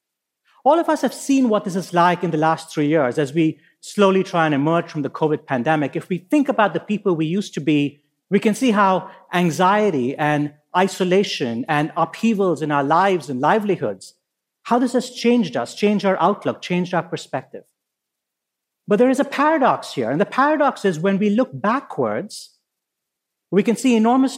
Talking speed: 190 wpm